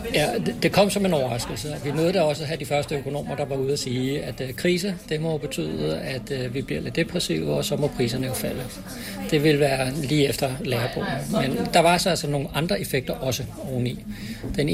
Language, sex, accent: Danish, male, native